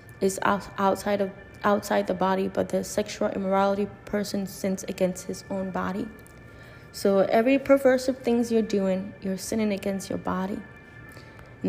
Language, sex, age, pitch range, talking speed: English, female, 20-39, 125-205 Hz, 150 wpm